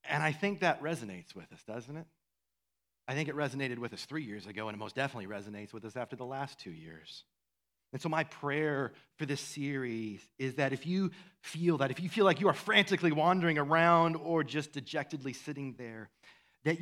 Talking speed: 205 wpm